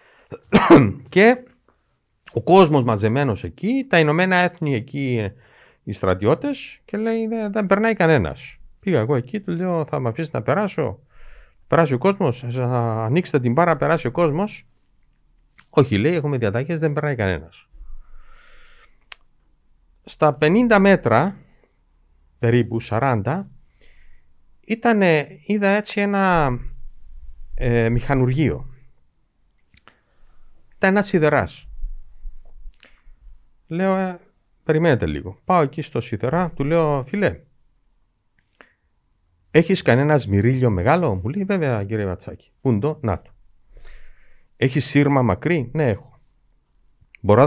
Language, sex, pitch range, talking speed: Greek, male, 110-175 Hz, 100 wpm